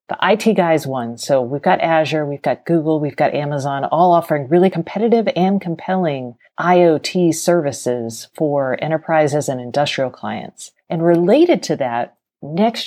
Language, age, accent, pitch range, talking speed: English, 40-59, American, 140-185 Hz, 150 wpm